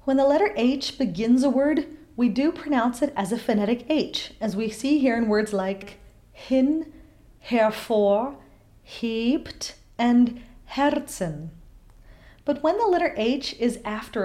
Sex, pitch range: female, 210-280 Hz